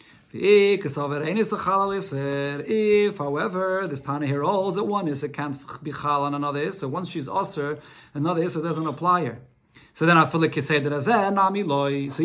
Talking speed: 165 wpm